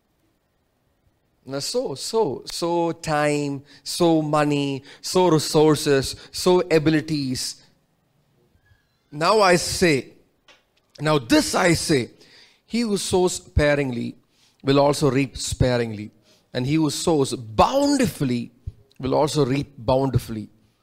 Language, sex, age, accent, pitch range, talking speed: English, male, 30-49, Indian, 140-215 Hz, 100 wpm